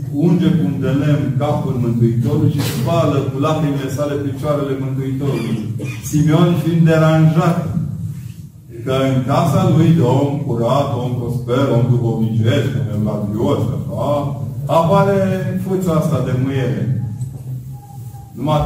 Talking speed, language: 115 wpm, Romanian